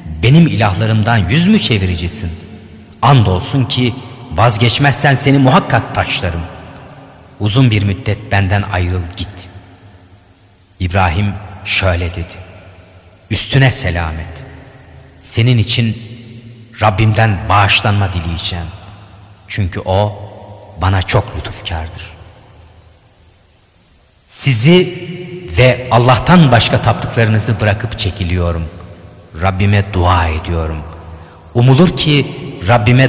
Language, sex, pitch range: Turkish, male, 90-120 Hz